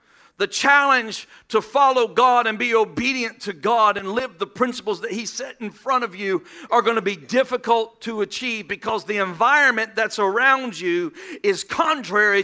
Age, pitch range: 50-69, 210-265 Hz